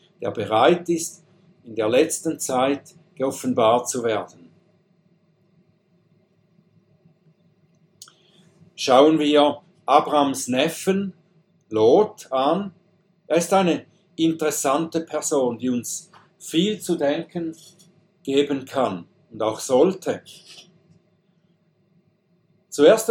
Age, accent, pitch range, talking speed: 60-79, German, 155-185 Hz, 85 wpm